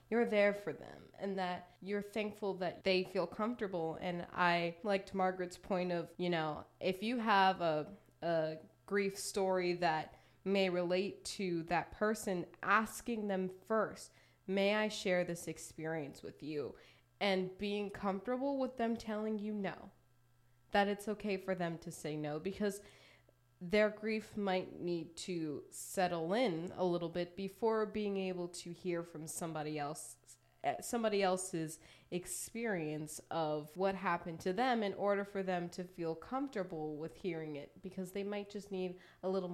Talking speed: 155 wpm